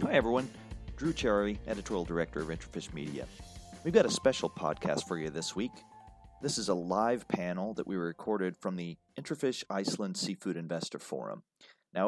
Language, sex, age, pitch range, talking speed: English, male, 30-49, 90-130 Hz, 170 wpm